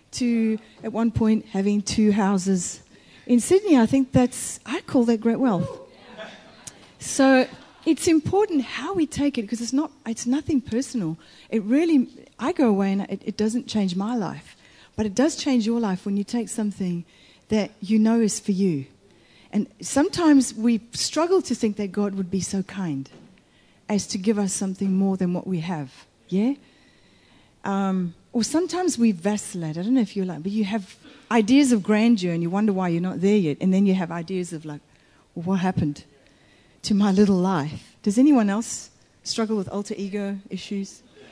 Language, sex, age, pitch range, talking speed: English, female, 40-59, 195-250 Hz, 185 wpm